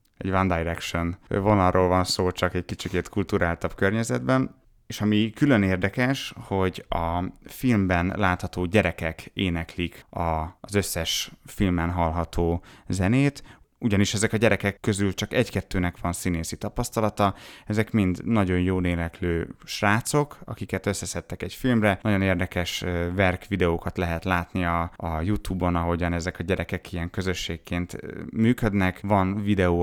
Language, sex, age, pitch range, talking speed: Hungarian, male, 30-49, 85-105 Hz, 130 wpm